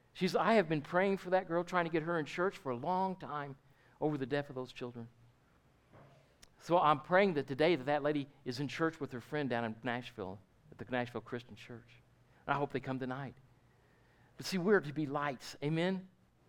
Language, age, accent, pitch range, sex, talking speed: English, 50-69, American, 135-190 Hz, male, 220 wpm